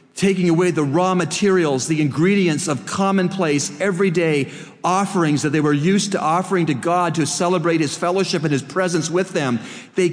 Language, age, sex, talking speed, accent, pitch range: English, 40-59, male, 170 wpm, American, 130-175 Hz